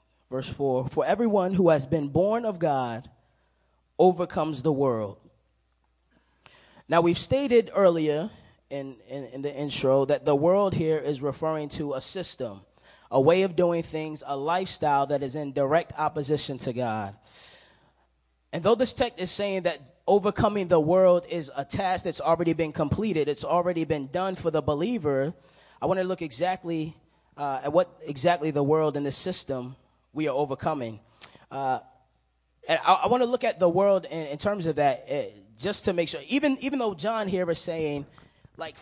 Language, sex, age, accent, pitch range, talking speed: English, male, 20-39, American, 140-185 Hz, 175 wpm